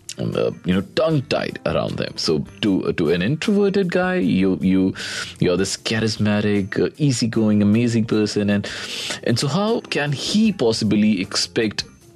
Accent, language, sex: native, Hindi, male